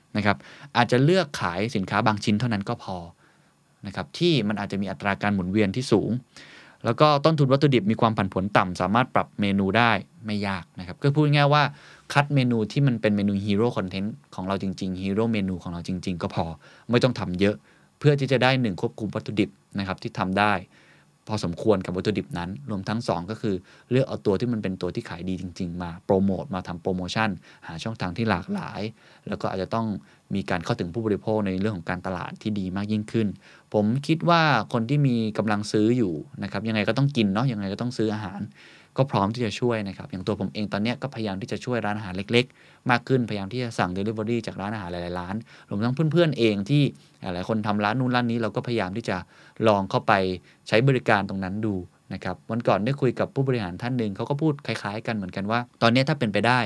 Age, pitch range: 20-39, 95-120 Hz